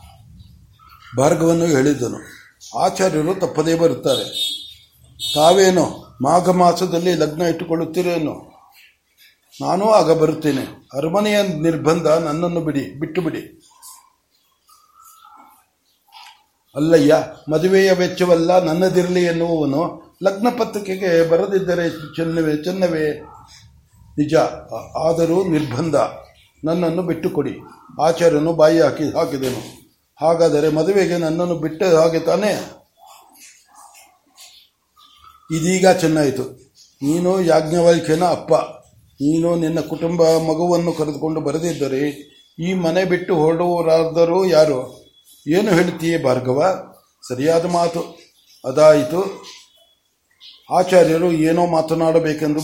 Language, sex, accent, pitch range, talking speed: Kannada, male, native, 155-180 Hz, 80 wpm